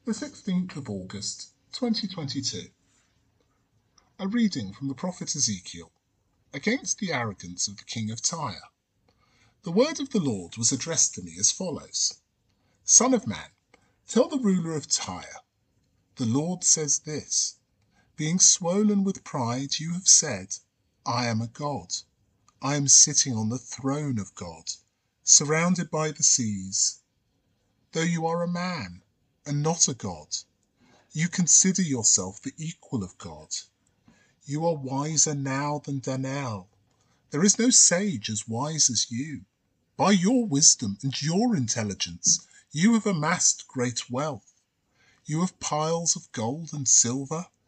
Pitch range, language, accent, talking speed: 110-170 Hz, English, British, 140 wpm